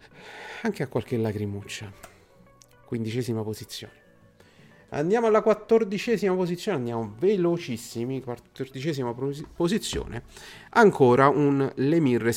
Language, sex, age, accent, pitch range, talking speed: Italian, male, 40-59, native, 110-145 Hz, 80 wpm